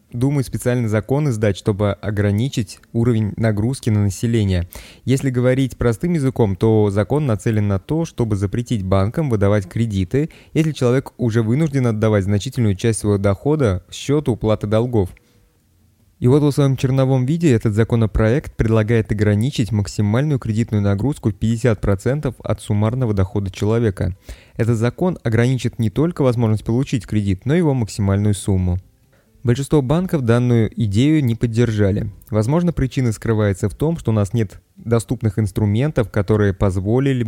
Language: Russian